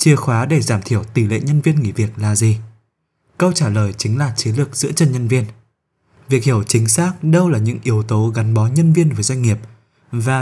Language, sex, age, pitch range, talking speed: Vietnamese, male, 20-39, 110-145 Hz, 235 wpm